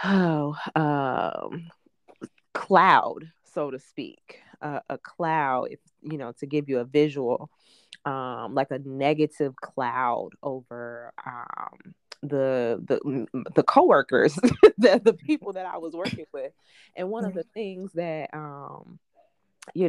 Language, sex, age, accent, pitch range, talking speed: English, female, 20-39, American, 140-165 Hz, 130 wpm